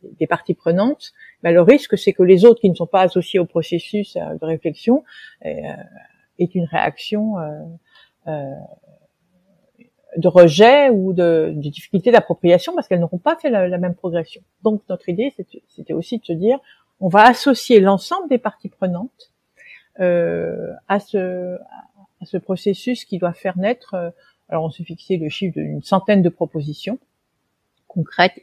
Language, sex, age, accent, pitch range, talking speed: French, female, 50-69, French, 180-220 Hz, 155 wpm